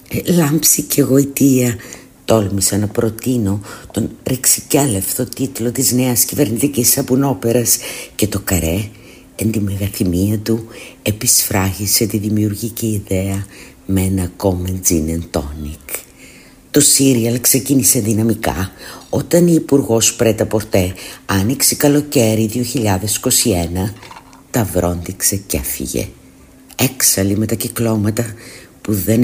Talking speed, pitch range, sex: 100 wpm, 100-125 Hz, female